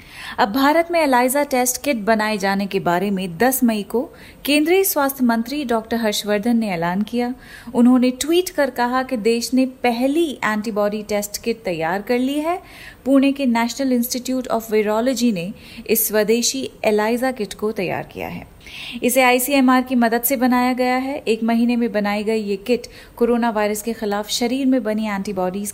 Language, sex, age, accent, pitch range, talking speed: Hindi, female, 30-49, native, 210-255 Hz, 175 wpm